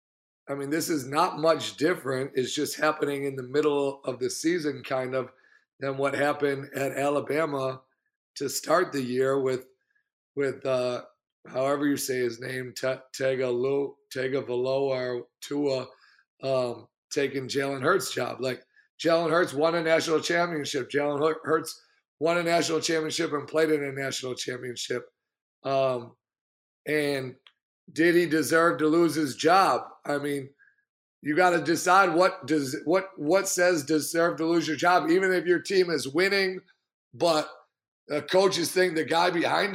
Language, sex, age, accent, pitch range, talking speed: English, male, 40-59, American, 135-170 Hz, 160 wpm